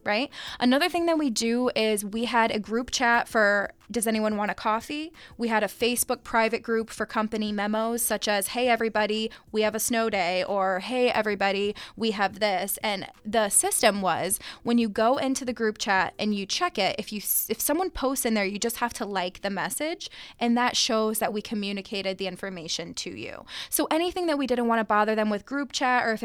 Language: English